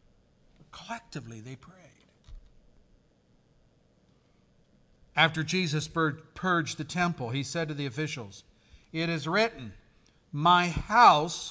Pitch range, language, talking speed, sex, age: 130-170 Hz, English, 95 wpm, male, 50-69